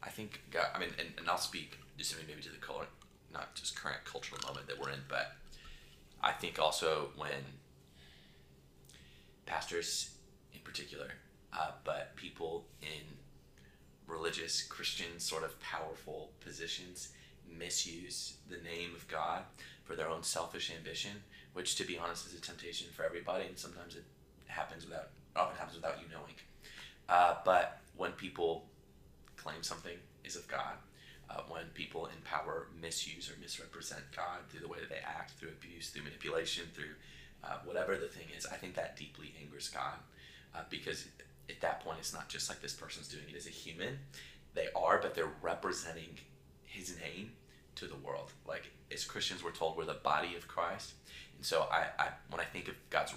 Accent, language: American, English